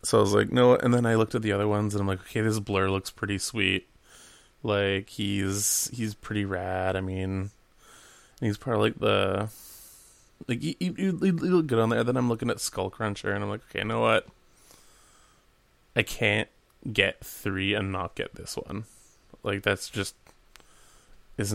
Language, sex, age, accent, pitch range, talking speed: English, male, 20-39, American, 100-120 Hz, 180 wpm